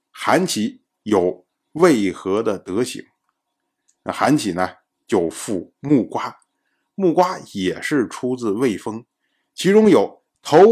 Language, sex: Chinese, male